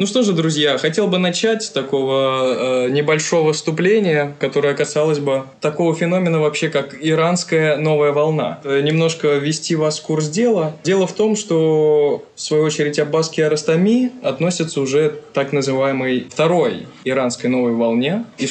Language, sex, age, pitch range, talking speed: Russian, male, 20-39, 130-165 Hz, 150 wpm